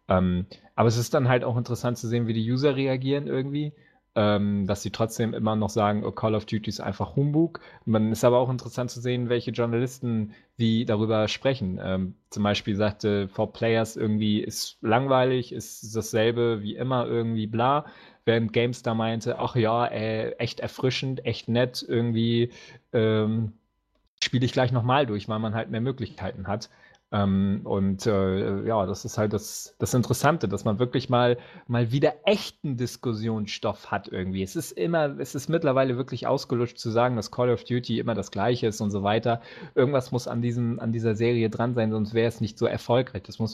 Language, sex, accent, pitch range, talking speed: English, male, German, 110-130 Hz, 190 wpm